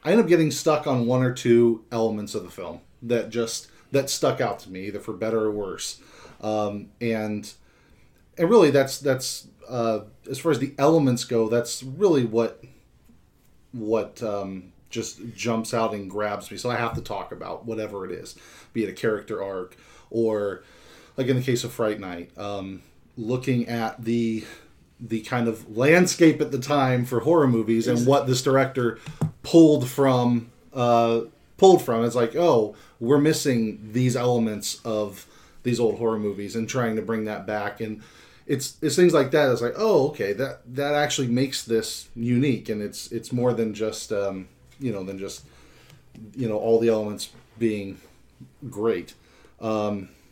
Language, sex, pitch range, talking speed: English, male, 110-135 Hz, 175 wpm